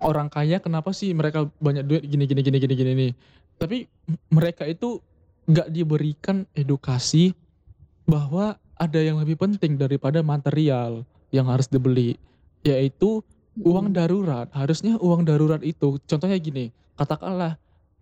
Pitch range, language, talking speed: 130-175 Hz, Indonesian, 130 wpm